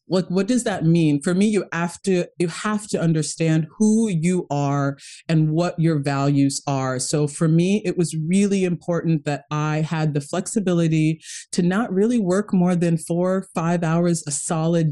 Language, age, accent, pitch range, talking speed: English, 30-49, American, 155-195 Hz, 180 wpm